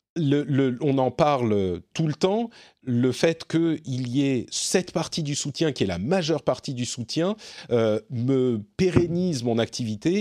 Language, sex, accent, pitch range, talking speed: French, male, French, 125-170 Hz, 170 wpm